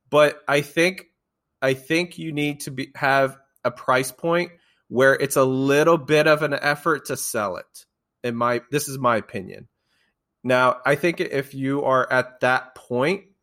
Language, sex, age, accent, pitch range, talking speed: English, male, 20-39, American, 120-150 Hz, 175 wpm